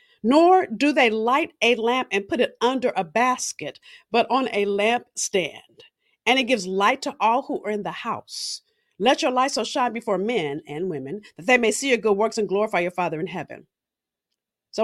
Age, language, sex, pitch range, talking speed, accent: 50-69, English, female, 195-260 Hz, 200 wpm, American